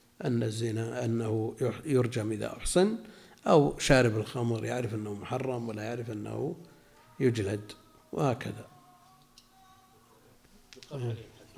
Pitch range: 110-135 Hz